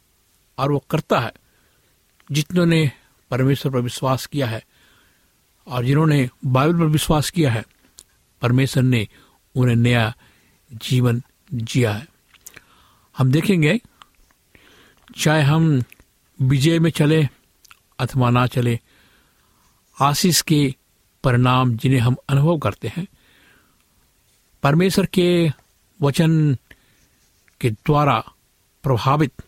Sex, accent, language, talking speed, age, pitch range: male, native, Hindi, 95 wpm, 50-69, 125-155 Hz